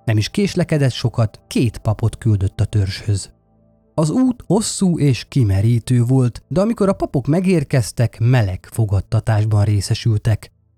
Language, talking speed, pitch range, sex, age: Hungarian, 130 wpm, 110-155 Hz, male, 30-49